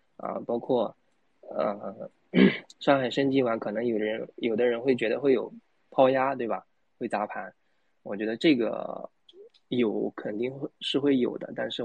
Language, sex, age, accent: Chinese, male, 20-39, native